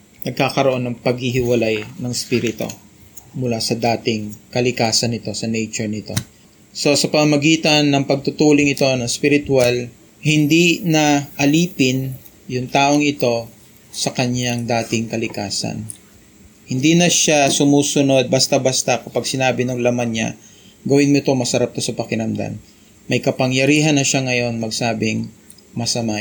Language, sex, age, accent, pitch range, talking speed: Filipino, male, 20-39, native, 110-140 Hz, 125 wpm